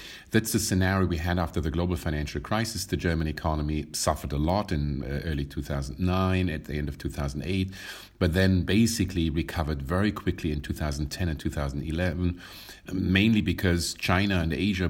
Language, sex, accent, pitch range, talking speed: English, male, German, 80-95 Hz, 155 wpm